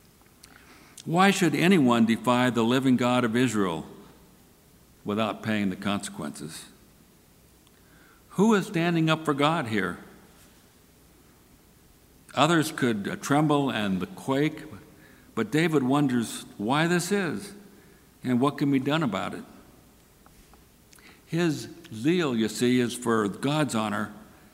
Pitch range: 105-140 Hz